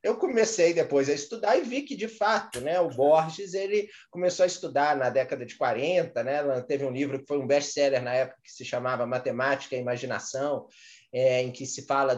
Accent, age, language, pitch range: Brazilian, 20-39, Portuguese, 140-215 Hz